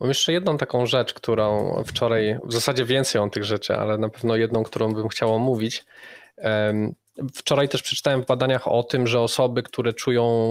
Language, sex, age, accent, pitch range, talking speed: Polish, male, 20-39, native, 110-125 Hz, 185 wpm